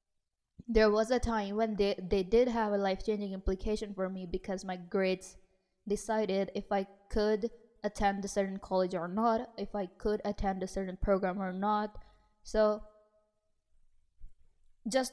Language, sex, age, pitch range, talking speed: English, female, 20-39, 190-220 Hz, 150 wpm